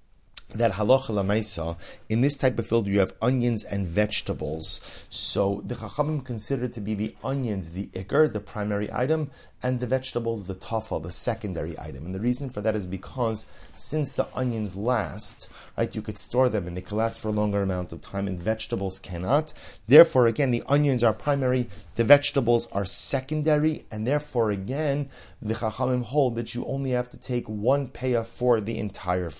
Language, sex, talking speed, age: English, male, 180 wpm, 30-49